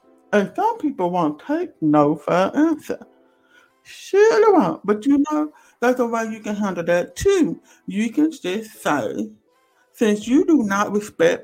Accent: American